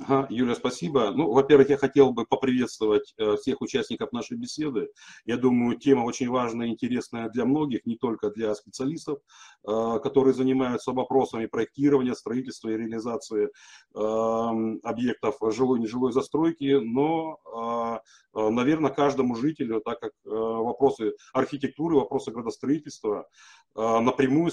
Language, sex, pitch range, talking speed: Russian, male, 120-155 Hz, 115 wpm